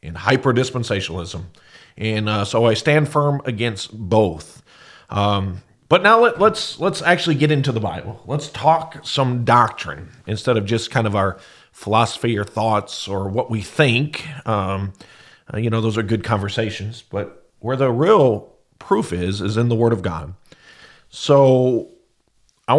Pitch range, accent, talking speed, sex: 110-140 Hz, American, 160 wpm, male